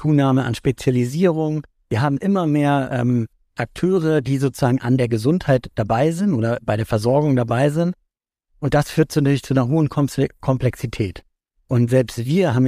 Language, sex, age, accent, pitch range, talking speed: German, male, 50-69, German, 120-150 Hz, 160 wpm